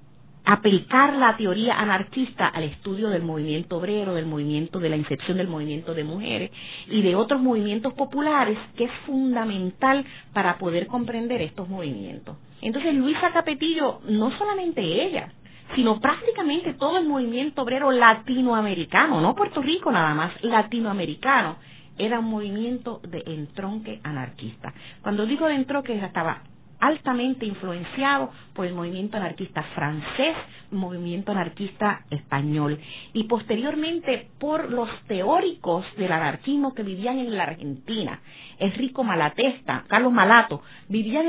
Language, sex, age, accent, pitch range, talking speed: Spanish, female, 40-59, American, 180-265 Hz, 130 wpm